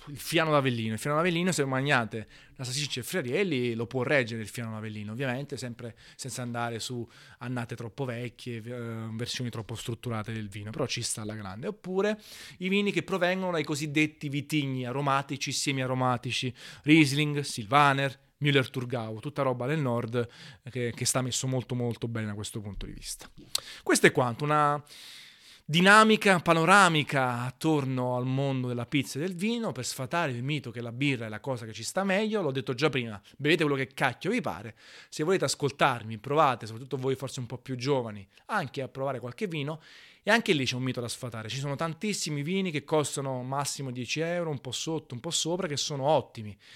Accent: native